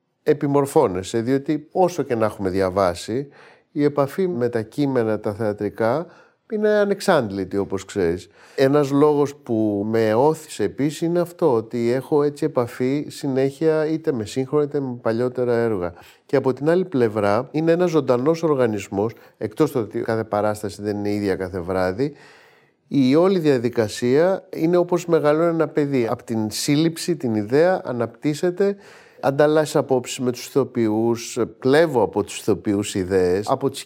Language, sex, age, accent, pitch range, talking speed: Greek, male, 30-49, native, 110-155 Hz, 150 wpm